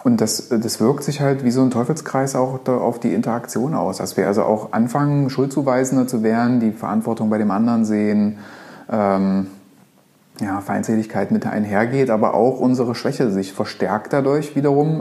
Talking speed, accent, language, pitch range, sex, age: 170 wpm, German, German, 110-145 Hz, male, 30-49